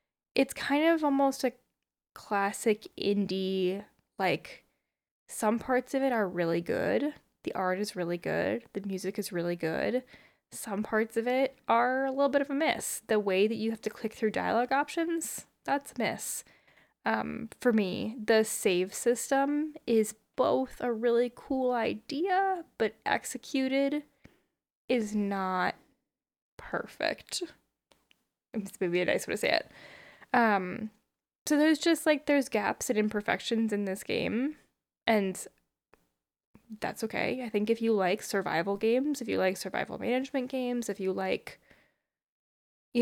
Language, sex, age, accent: English, female, 10-29, American